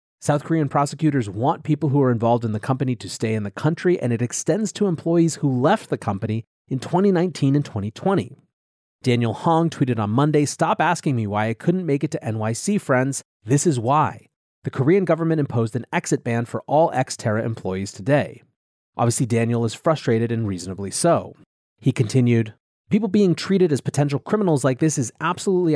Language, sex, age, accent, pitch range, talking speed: English, male, 30-49, American, 115-160 Hz, 185 wpm